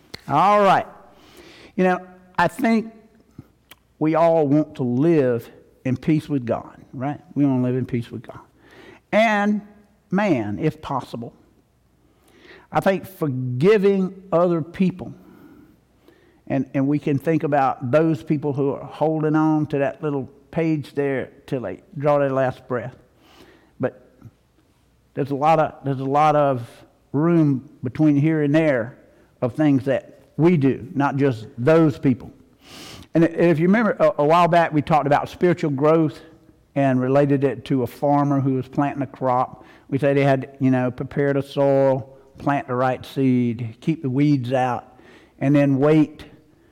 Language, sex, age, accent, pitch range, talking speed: English, male, 60-79, American, 130-155 Hz, 155 wpm